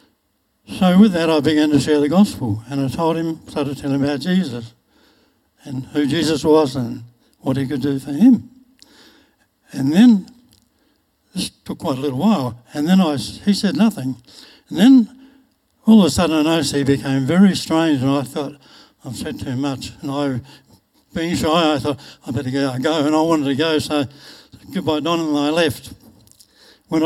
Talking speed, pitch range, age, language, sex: 185 wpm, 140-170 Hz, 60-79, English, male